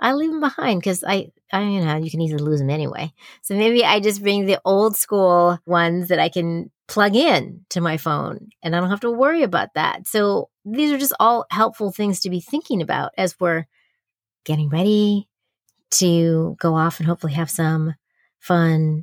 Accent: American